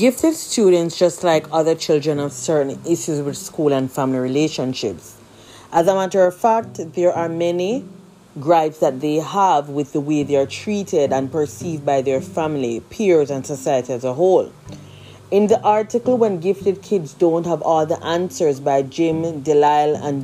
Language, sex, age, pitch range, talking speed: English, female, 30-49, 150-190 Hz, 170 wpm